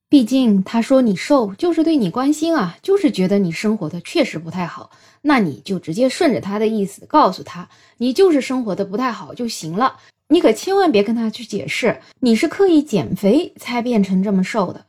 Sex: female